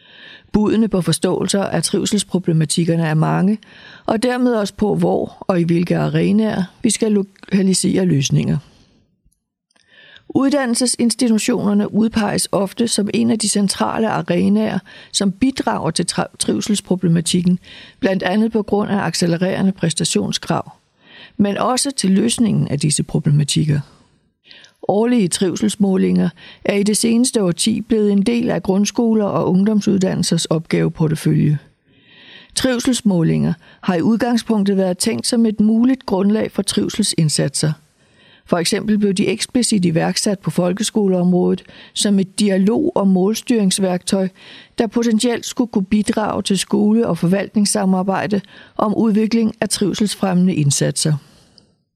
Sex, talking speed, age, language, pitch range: female, 115 wpm, 60-79, Danish, 180-220 Hz